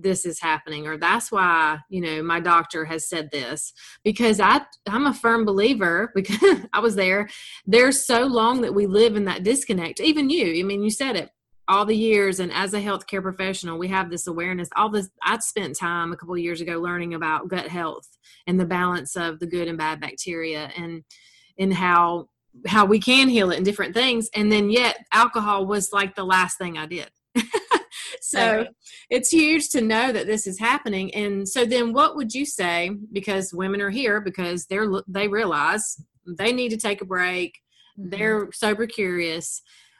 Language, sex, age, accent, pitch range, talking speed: English, female, 30-49, American, 175-220 Hz, 195 wpm